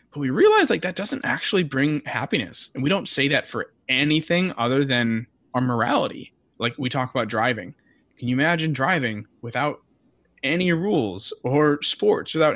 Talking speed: 165 wpm